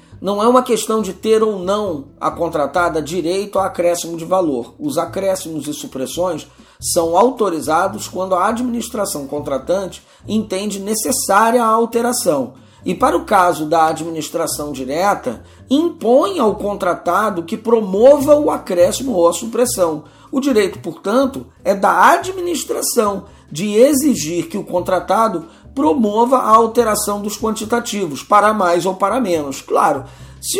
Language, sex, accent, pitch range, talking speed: Portuguese, male, Brazilian, 165-225 Hz, 135 wpm